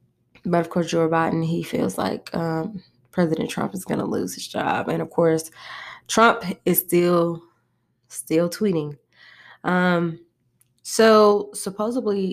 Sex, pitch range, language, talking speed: female, 155-170 Hz, English, 135 wpm